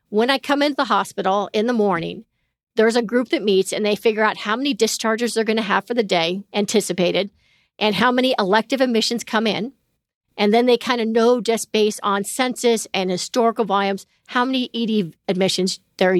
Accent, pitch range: American, 200-250 Hz